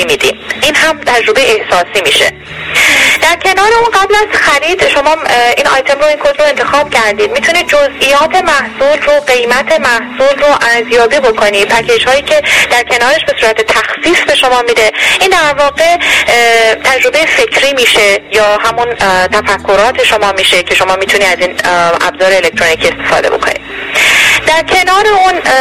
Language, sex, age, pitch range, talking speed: Persian, female, 10-29, 215-295 Hz, 145 wpm